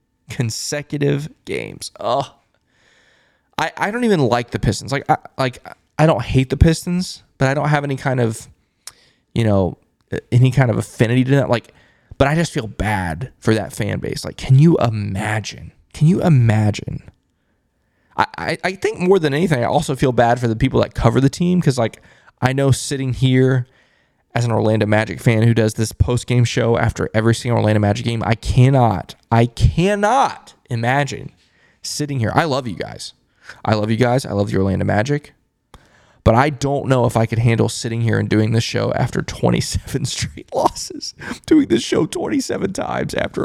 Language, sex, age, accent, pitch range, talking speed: English, male, 20-39, American, 110-140 Hz, 185 wpm